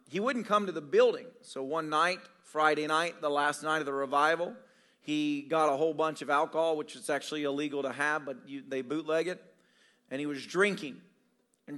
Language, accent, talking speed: English, American, 205 wpm